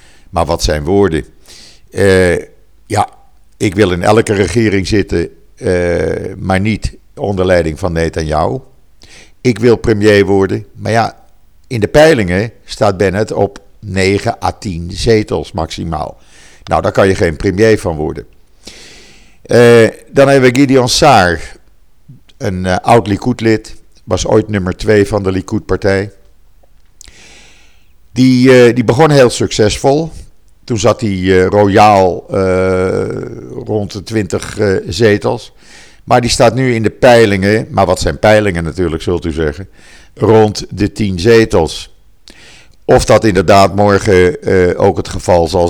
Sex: male